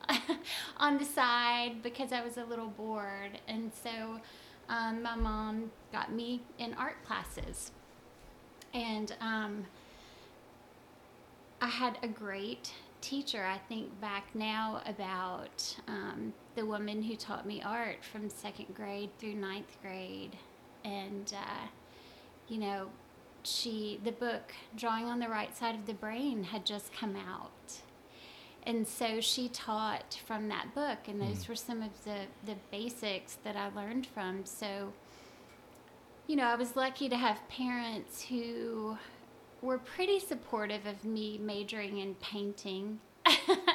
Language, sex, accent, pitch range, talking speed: English, female, American, 200-240 Hz, 135 wpm